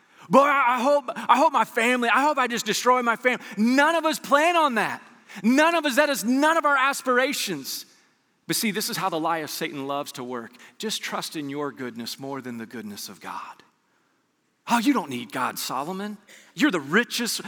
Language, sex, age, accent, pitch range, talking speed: English, male, 40-59, American, 180-235 Hz, 205 wpm